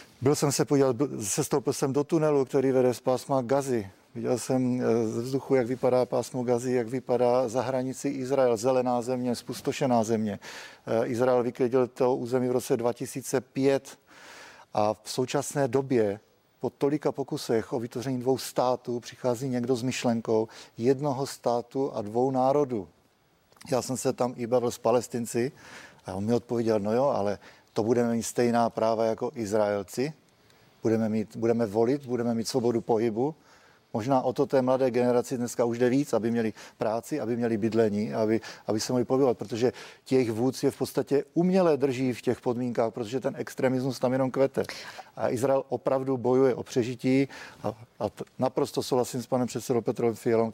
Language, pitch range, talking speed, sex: Czech, 115-135 Hz, 170 wpm, male